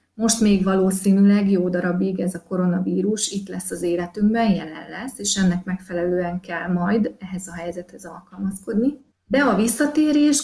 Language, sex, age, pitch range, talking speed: Hungarian, female, 30-49, 180-215 Hz, 150 wpm